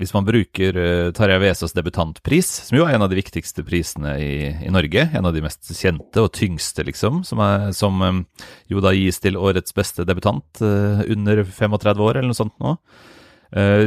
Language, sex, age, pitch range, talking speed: English, male, 30-49, 80-105 Hz, 175 wpm